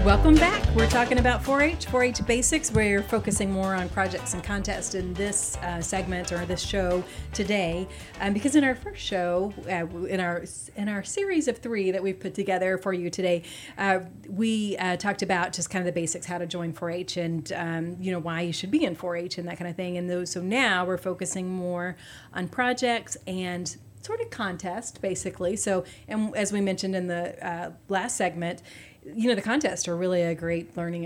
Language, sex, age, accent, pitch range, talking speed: English, female, 30-49, American, 175-205 Hz, 205 wpm